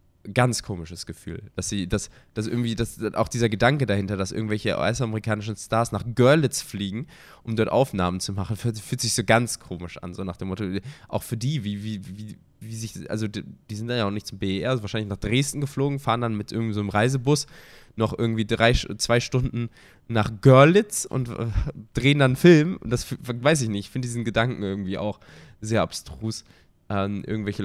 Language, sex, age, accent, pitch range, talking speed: German, male, 20-39, German, 95-120 Hz, 200 wpm